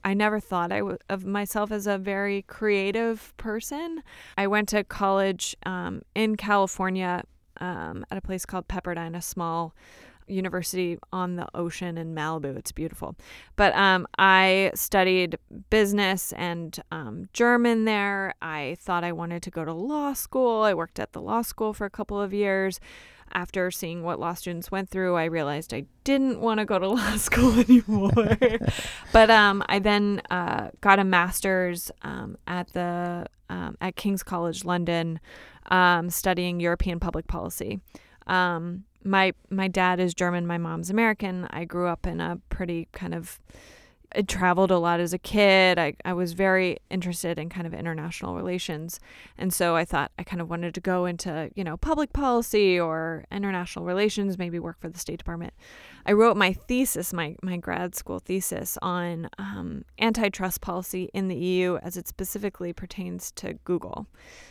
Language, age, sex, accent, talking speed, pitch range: Swedish, 20-39, female, American, 170 wpm, 170-200 Hz